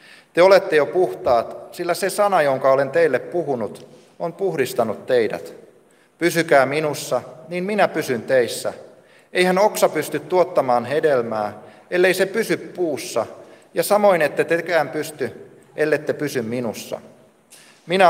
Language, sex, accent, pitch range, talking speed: Finnish, male, native, 145-190 Hz, 125 wpm